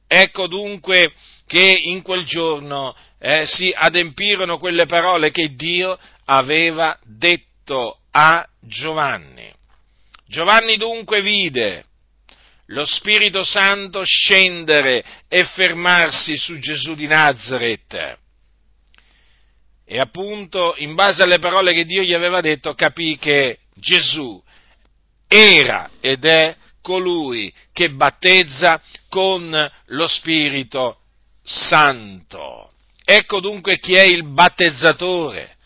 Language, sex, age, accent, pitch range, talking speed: Italian, male, 50-69, native, 150-185 Hz, 105 wpm